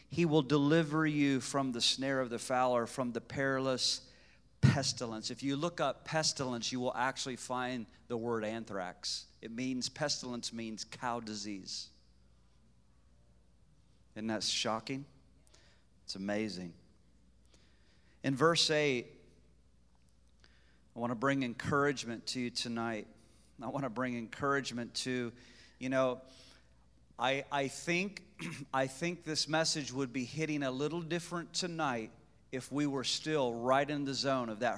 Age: 40-59